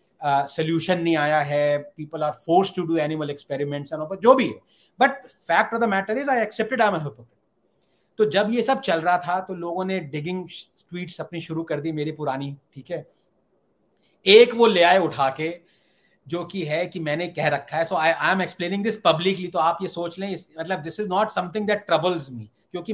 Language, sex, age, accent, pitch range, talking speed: English, male, 40-59, Indian, 155-210 Hz, 150 wpm